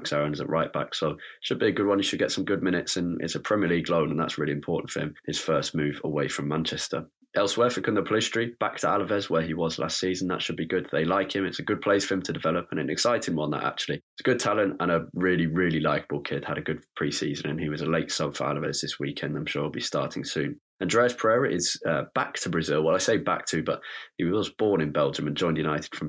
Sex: male